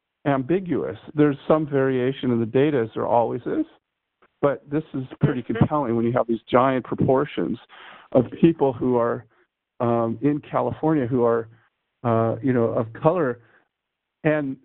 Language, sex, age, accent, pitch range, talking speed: English, male, 50-69, American, 120-150 Hz, 150 wpm